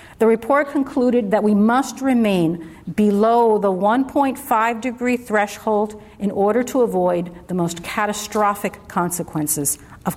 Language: English